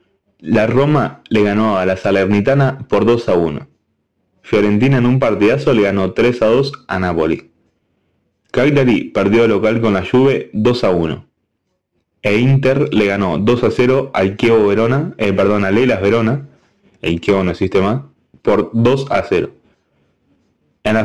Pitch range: 100-125 Hz